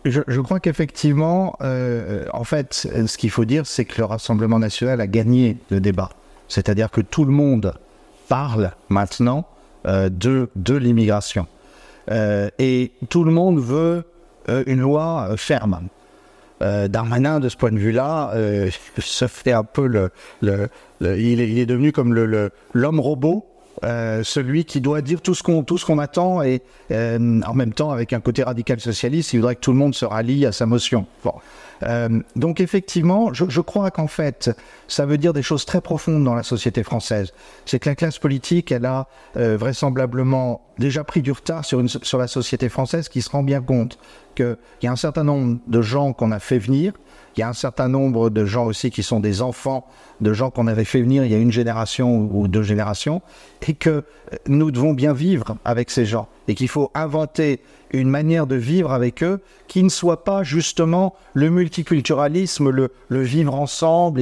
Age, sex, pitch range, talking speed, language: 50-69, male, 115-150 Hz, 200 wpm, French